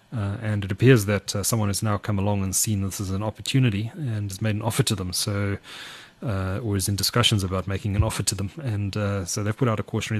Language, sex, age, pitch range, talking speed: English, male, 30-49, 100-115 Hz, 260 wpm